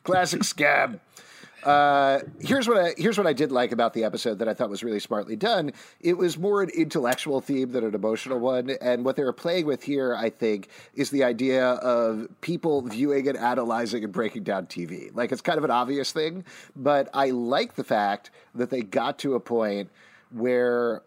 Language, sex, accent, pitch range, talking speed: English, male, American, 120-155 Hz, 200 wpm